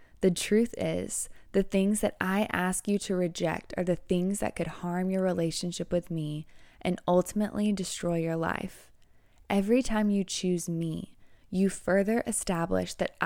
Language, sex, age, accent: English, female, 20-39, American